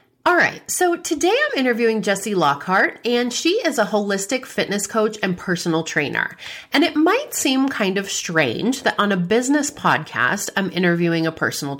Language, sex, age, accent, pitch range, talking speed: English, female, 30-49, American, 170-245 Hz, 175 wpm